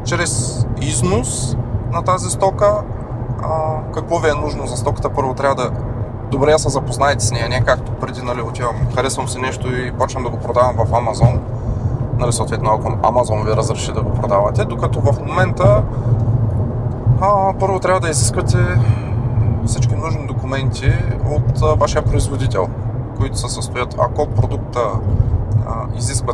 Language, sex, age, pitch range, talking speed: Bulgarian, male, 20-39, 110-125 Hz, 145 wpm